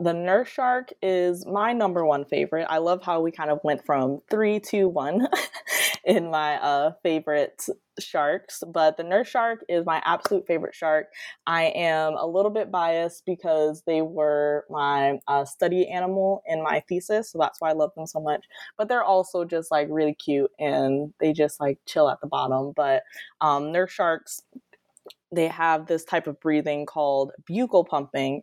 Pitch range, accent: 145-185 Hz, American